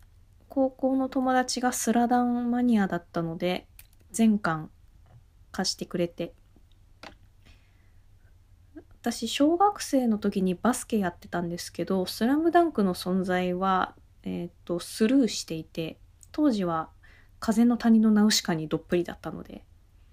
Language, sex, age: Japanese, female, 20-39